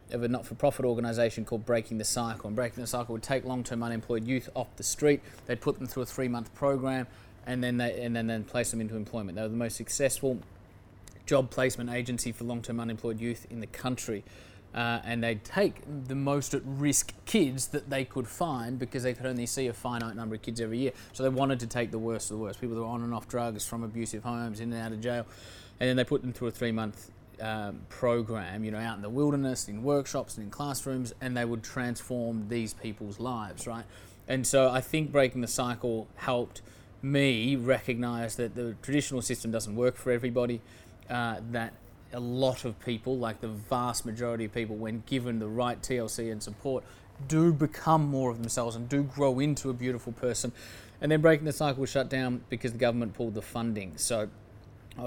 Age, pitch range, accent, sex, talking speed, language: 20-39, 110-130 Hz, Australian, male, 215 wpm, English